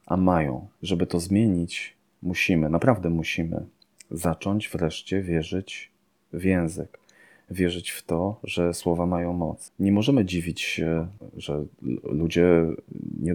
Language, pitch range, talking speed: Polish, 80-90 Hz, 120 wpm